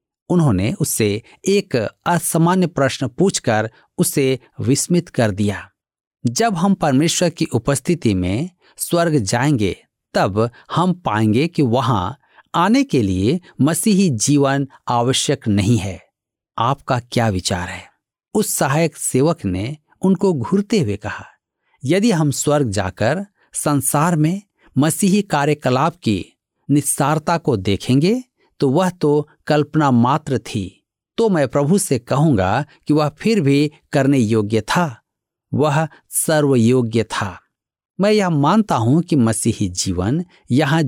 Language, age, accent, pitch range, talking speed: Hindi, 50-69, native, 120-175 Hz, 125 wpm